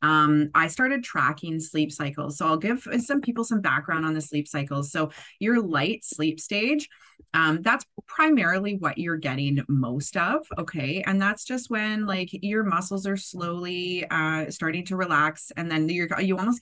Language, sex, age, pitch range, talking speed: English, female, 20-39, 150-200 Hz, 175 wpm